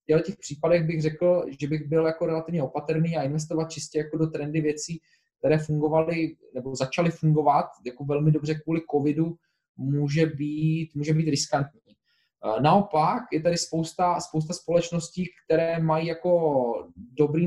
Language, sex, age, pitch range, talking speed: Slovak, male, 20-39, 150-175 Hz, 150 wpm